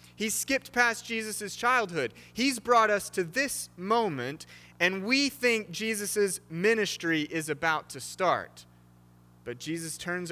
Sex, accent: male, American